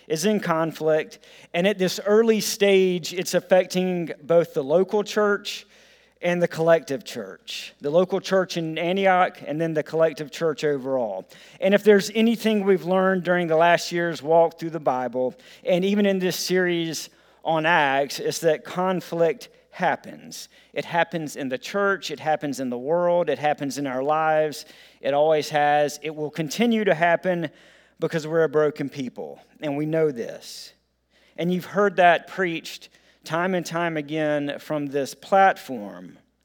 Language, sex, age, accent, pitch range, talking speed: English, male, 40-59, American, 155-190 Hz, 160 wpm